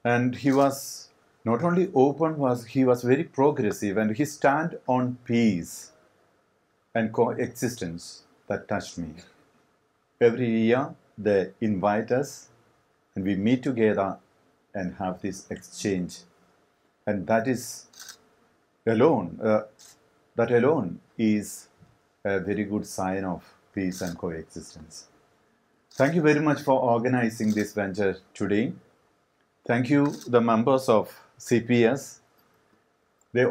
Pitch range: 100-130 Hz